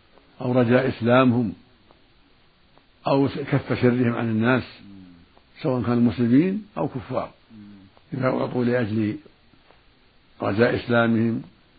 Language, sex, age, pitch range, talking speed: Arabic, male, 60-79, 110-130 Hz, 90 wpm